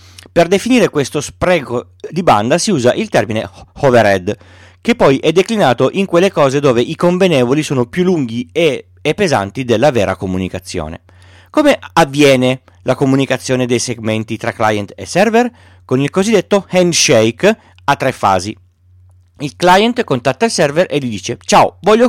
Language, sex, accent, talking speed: Italian, male, native, 150 wpm